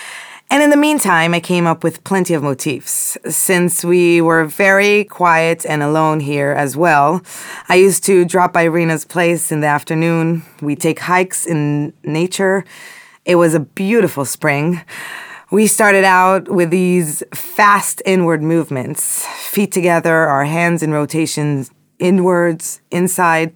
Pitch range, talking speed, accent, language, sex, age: 155-190 Hz, 145 wpm, American, Hebrew, female, 20-39